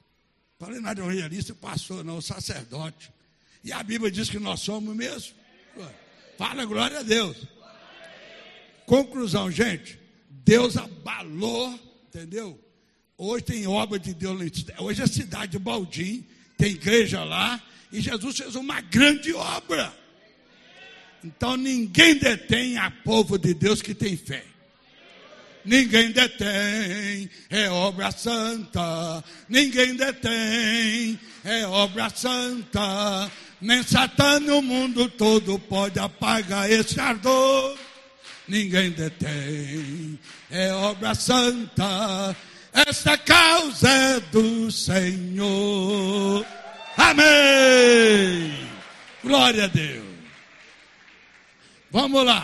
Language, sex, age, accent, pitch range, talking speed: Portuguese, male, 60-79, Brazilian, 190-245 Hz, 105 wpm